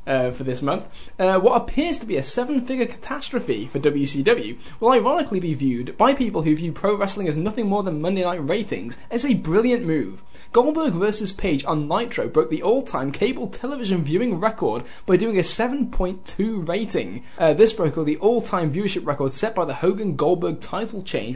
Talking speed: 185 wpm